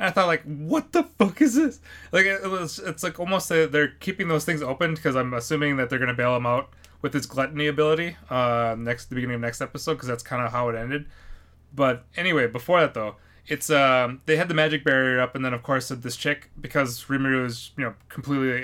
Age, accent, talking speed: 20-39, American, 230 wpm